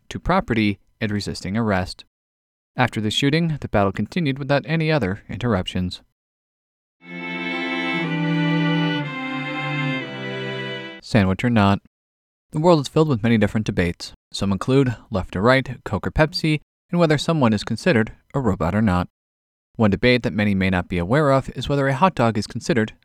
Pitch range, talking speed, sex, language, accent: 90-130 Hz, 155 wpm, male, English, American